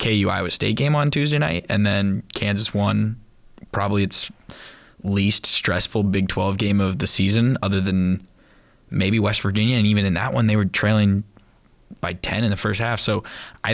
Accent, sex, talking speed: American, male, 185 wpm